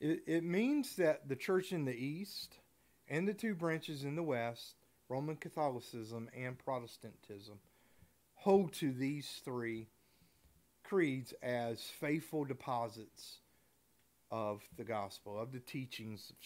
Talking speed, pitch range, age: 125 wpm, 110-150 Hz, 40-59